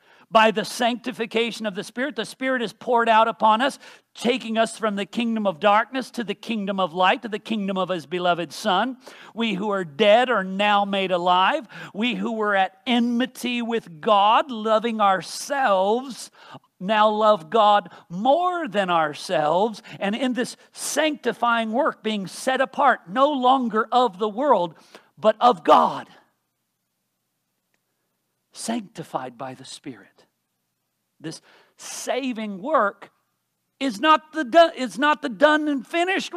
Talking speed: 140 wpm